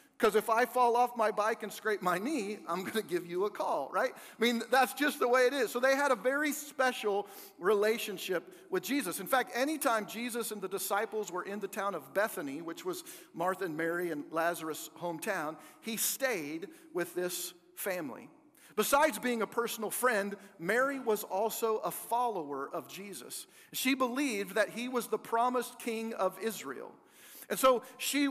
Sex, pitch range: male, 175-250 Hz